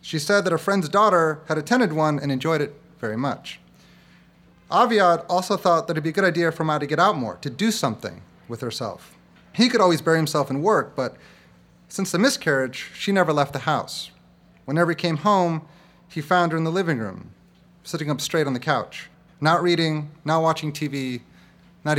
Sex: male